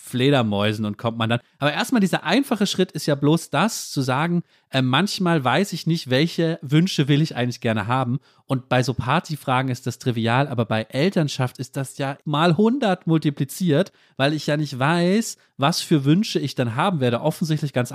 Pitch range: 120-160 Hz